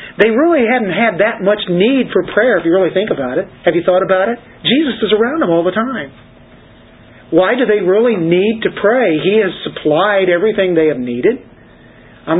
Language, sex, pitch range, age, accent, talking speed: English, male, 150-195 Hz, 50-69, American, 205 wpm